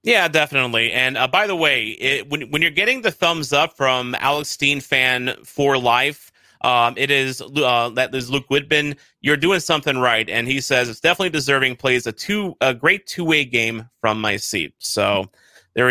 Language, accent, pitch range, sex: English, American, 120-160 Hz, male